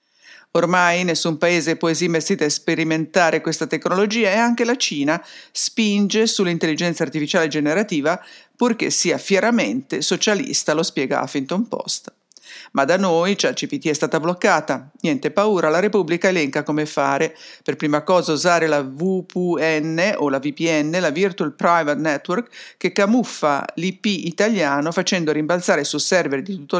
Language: English